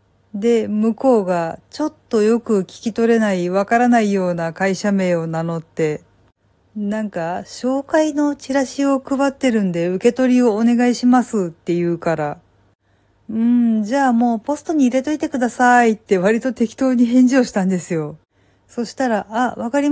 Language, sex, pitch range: Japanese, female, 175-240 Hz